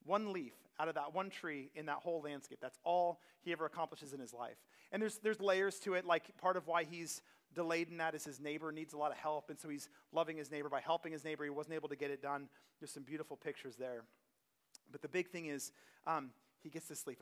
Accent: American